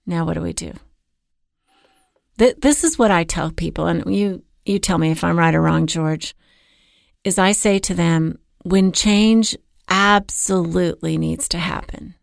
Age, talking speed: 40-59, 165 wpm